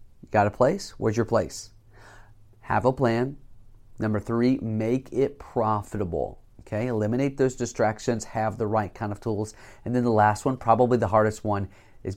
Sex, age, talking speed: male, 30-49, 170 wpm